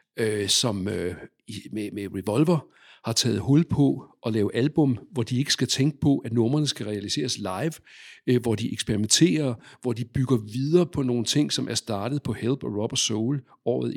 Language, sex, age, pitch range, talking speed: Danish, male, 60-79, 115-145 Hz, 190 wpm